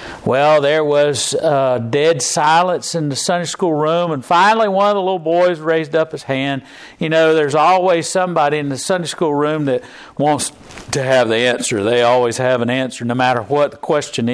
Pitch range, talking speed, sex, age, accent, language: 140-190 Hz, 200 wpm, male, 50-69, American, English